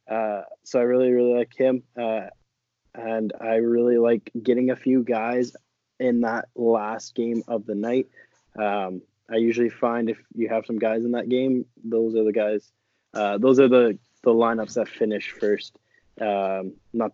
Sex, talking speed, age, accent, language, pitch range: male, 170 wpm, 20-39, American, English, 110-130 Hz